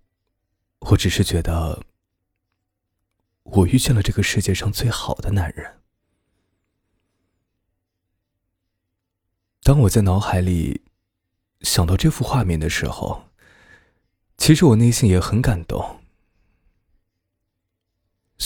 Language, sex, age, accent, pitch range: Chinese, male, 20-39, native, 90-100 Hz